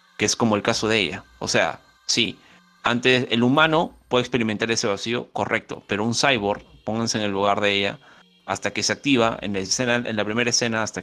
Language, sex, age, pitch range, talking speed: Spanish, male, 30-49, 100-120 Hz, 210 wpm